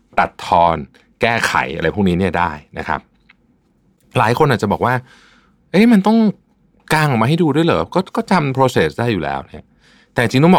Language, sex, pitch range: Thai, male, 90-140 Hz